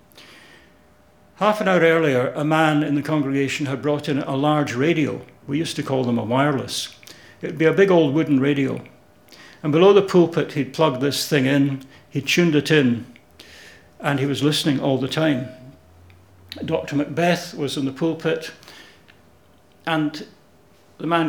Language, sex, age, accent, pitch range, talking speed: English, male, 70-89, British, 130-155 Hz, 165 wpm